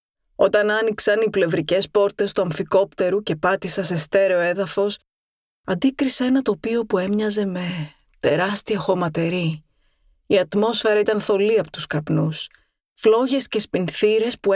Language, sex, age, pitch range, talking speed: Greek, female, 20-39, 170-205 Hz, 130 wpm